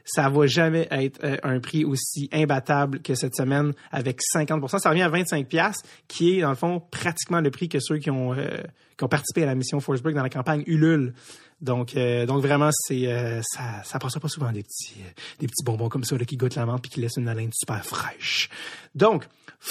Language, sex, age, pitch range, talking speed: French, male, 30-49, 140-175 Hz, 230 wpm